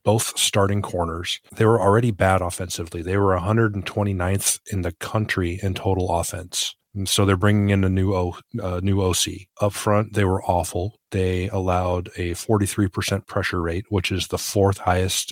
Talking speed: 165 wpm